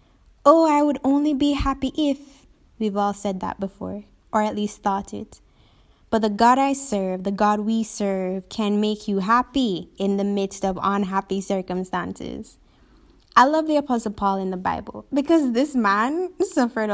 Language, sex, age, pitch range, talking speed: English, female, 10-29, 200-255 Hz, 170 wpm